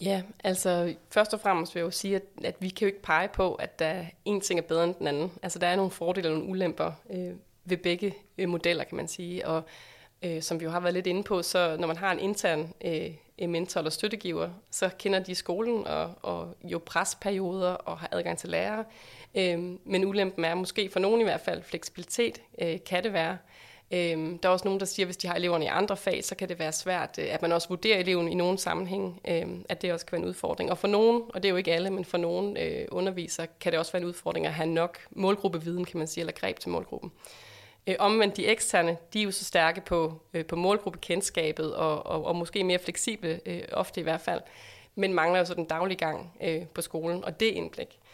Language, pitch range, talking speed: Danish, 170-195 Hz, 220 wpm